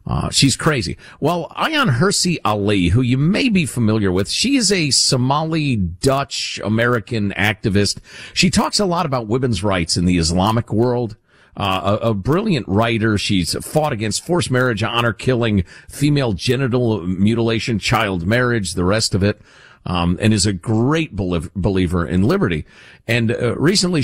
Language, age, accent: English, 50-69, American